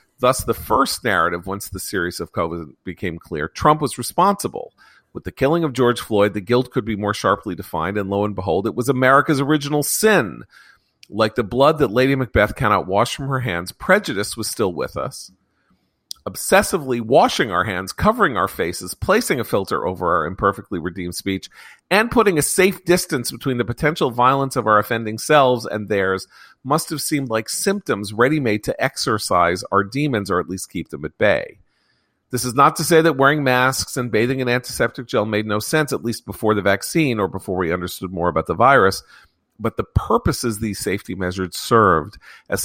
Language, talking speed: English, 190 wpm